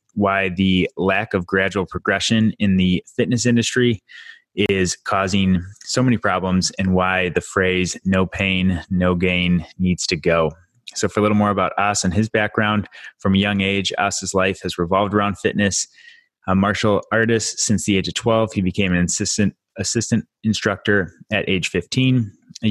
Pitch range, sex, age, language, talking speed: 95-105 Hz, male, 20-39, English, 170 wpm